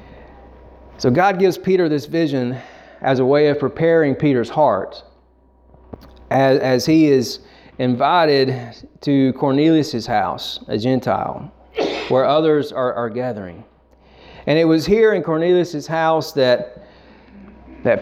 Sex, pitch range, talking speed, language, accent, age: male, 120-155 Hz, 125 wpm, Bengali, American, 40-59